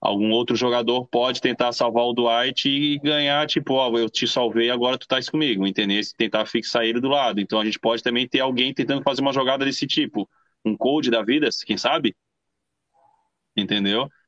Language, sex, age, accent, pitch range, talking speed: Portuguese, male, 20-39, Brazilian, 115-130 Hz, 195 wpm